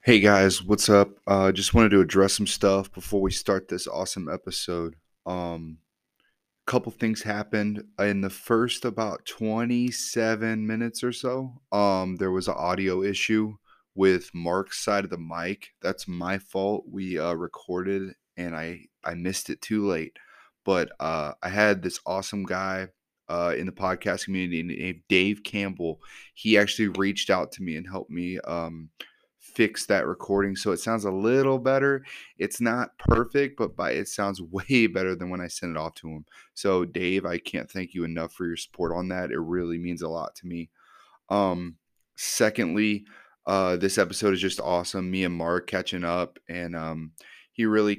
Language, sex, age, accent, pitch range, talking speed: English, male, 20-39, American, 90-105 Hz, 175 wpm